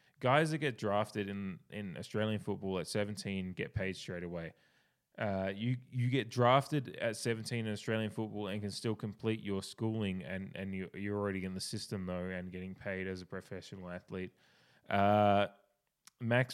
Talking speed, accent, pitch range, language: 175 wpm, Australian, 100-130 Hz, English